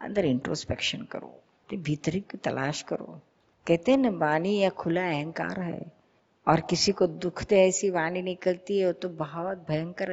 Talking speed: 160 wpm